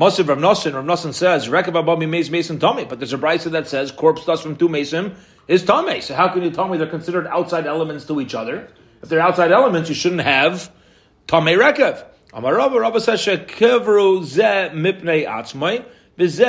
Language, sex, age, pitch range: English, male, 40-59, 155-190 Hz